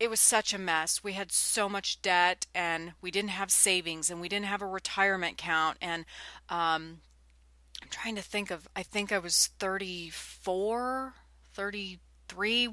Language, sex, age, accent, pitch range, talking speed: English, female, 30-49, American, 170-200 Hz, 165 wpm